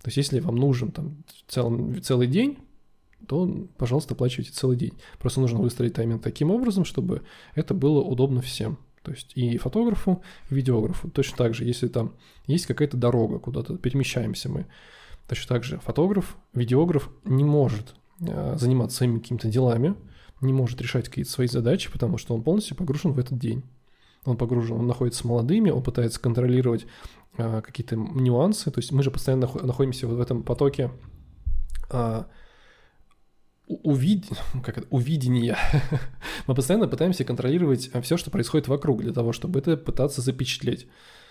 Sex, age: male, 20-39